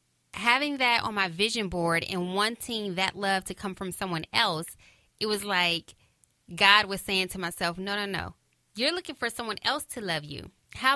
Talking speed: 190 wpm